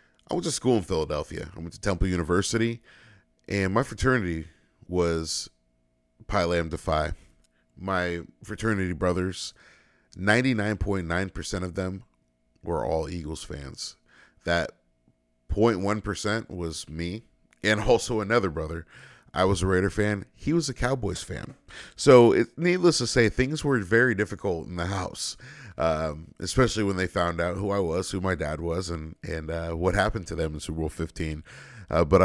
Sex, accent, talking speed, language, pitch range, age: male, American, 155 wpm, English, 80-100 Hz, 30-49